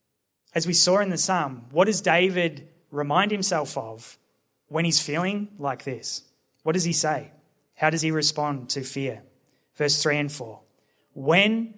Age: 20-39